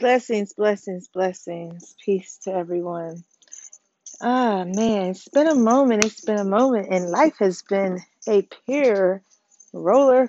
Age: 30-49